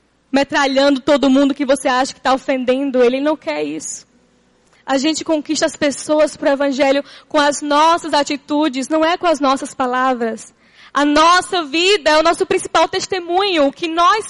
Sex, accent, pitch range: female, Brazilian, 290-355 Hz